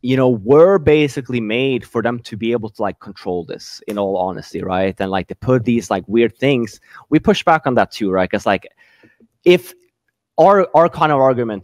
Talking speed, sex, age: 210 wpm, male, 20-39